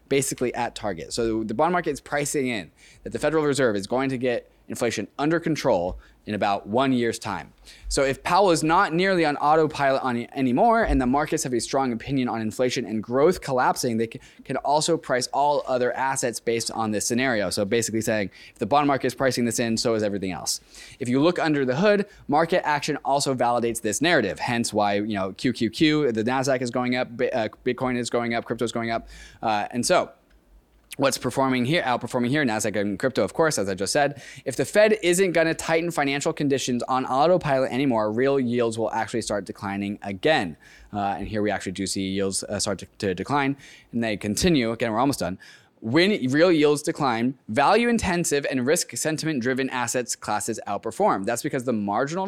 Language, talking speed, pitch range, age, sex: English, 210 wpm, 115-145 Hz, 20-39, male